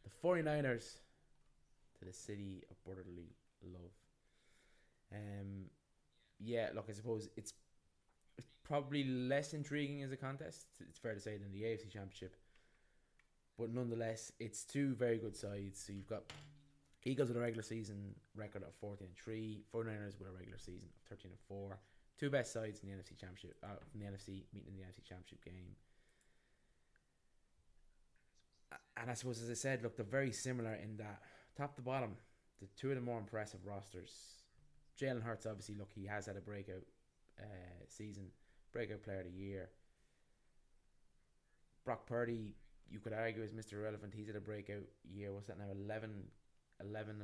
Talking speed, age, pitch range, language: 165 wpm, 20-39, 95-115 Hz, English